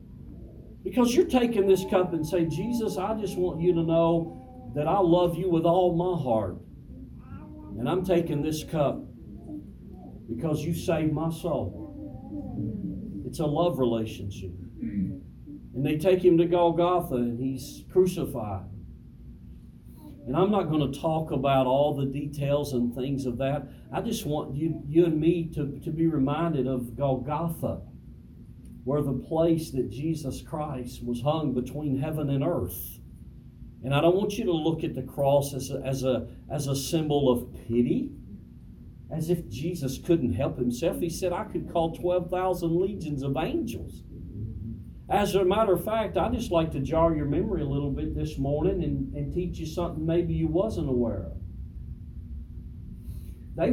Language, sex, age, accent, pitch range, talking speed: English, male, 40-59, American, 125-170 Hz, 165 wpm